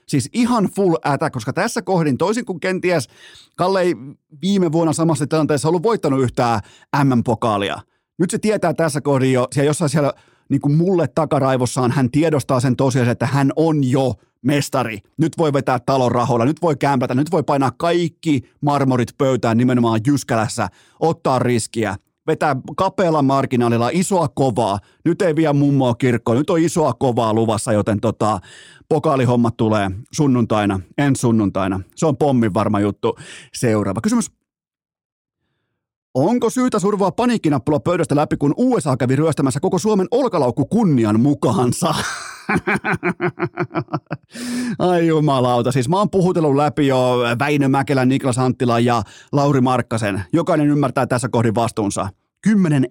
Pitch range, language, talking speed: 120-160 Hz, Finnish, 140 wpm